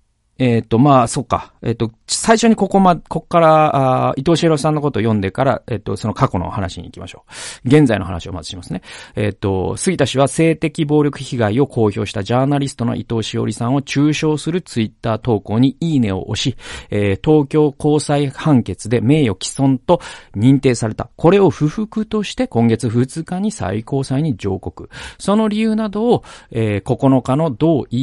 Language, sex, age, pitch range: Japanese, male, 40-59, 115-150 Hz